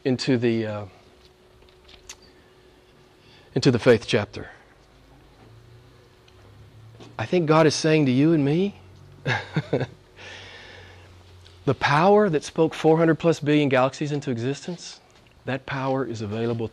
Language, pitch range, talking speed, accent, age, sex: English, 110-145 Hz, 110 wpm, American, 40-59, male